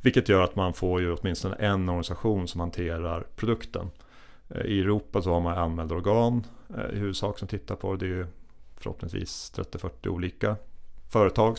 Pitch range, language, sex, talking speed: 85-105 Hz, Swedish, male, 165 wpm